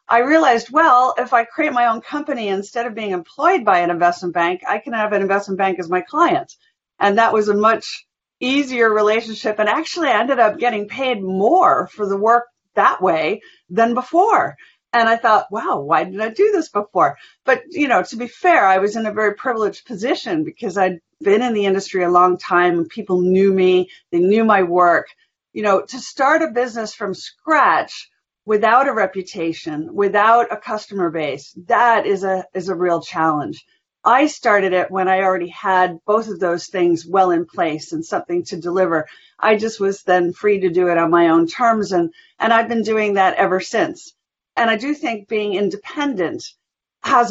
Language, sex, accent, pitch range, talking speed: English, female, American, 180-235 Hz, 195 wpm